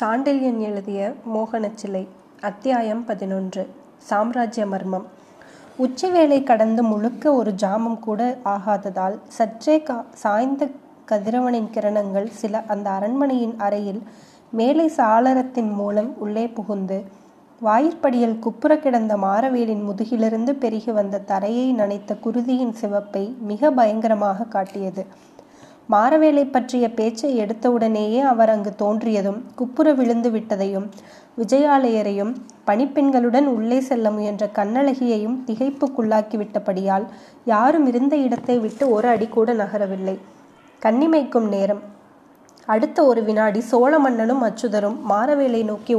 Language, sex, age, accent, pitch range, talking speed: Tamil, female, 20-39, native, 210-255 Hz, 100 wpm